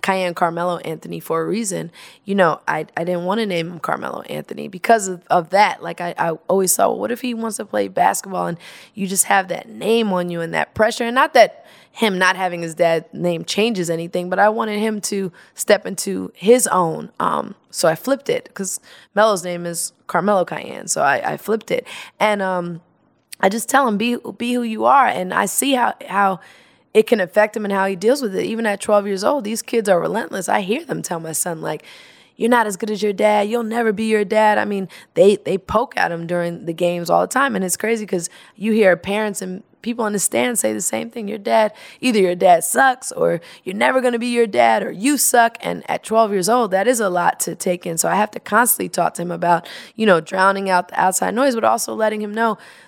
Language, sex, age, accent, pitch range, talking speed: English, female, 20-39, American, 180-230 Hz, 245 wpm